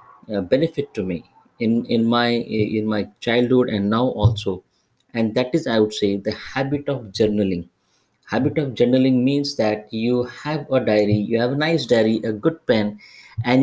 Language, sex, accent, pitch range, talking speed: English, male, Indian, 110-135 Hz, 180 wpm